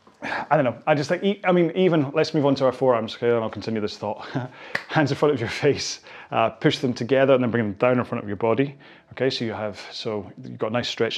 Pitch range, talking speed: 115-140 Hz, 275 wpm